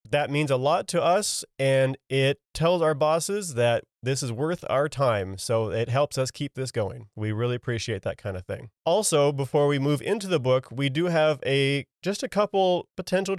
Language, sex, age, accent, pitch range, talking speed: English, male, 30-49, American, 120-145 Hz, 205 wpm